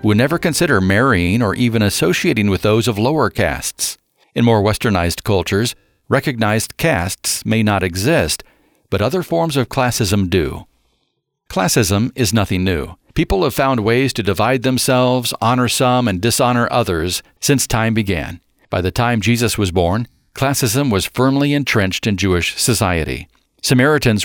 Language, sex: English, male